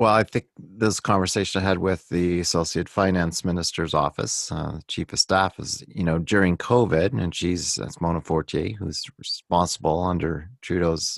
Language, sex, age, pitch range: English, male, 40-59, 80-95 Hz